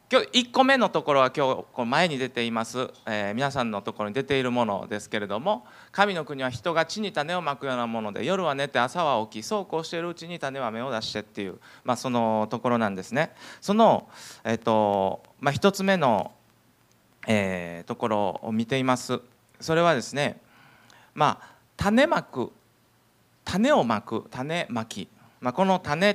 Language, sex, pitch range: Japanese, male, 115-180 Hz